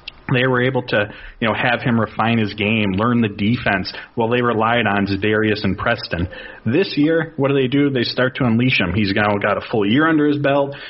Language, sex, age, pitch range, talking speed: English, male, 30-49, 105-130 Hz, 225 wpm